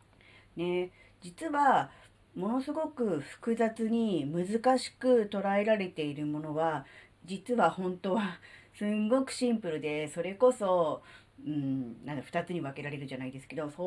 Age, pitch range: 40-59, 140-235 Hz